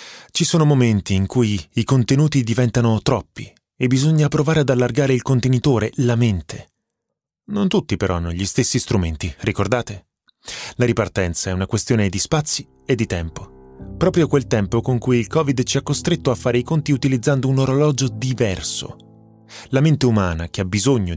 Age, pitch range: 30-49, 110-140 Hz